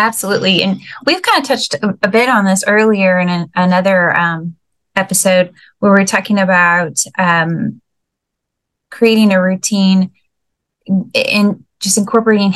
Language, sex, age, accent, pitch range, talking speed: English, female, 10-29, American, 175-205 Hz, 130 wpm